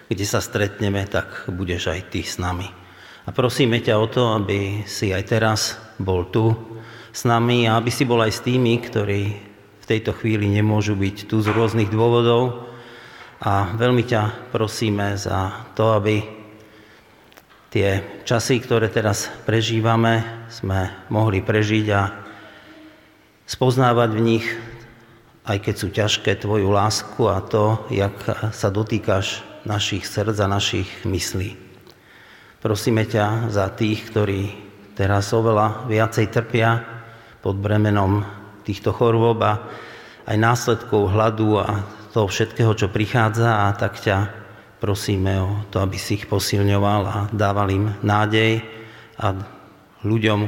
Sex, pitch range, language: male, 100-115 Hz, Slovak